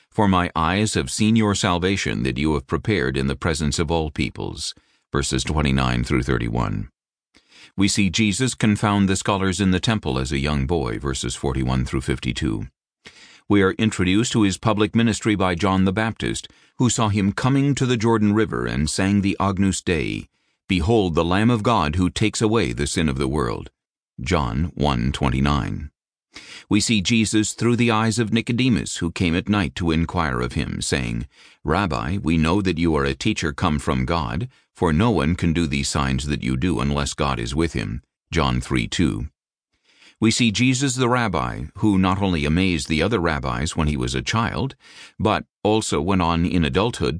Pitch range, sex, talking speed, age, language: 70-105 Hz, male, 185 wpm, 50-69, English